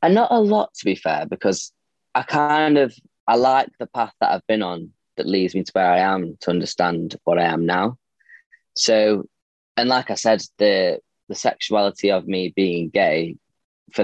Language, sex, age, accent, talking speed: English, male, 10-29, British, 190 wpm